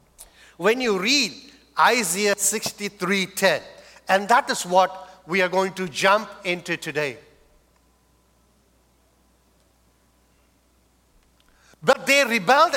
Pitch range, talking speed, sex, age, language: 180-250 Hz, 90 wpm, male, 50-69, English